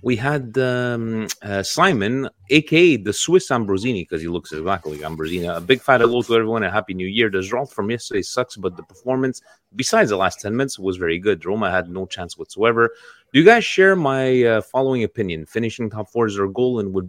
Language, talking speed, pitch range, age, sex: Italian, 220 wpm, 95-135 Hz, 30-49, male